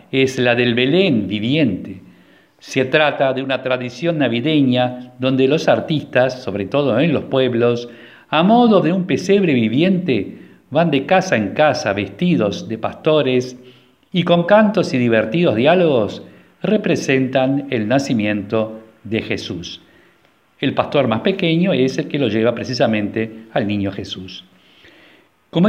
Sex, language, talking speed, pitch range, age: male, Spanish, 135 wpm, 110-155 Hz, 50-69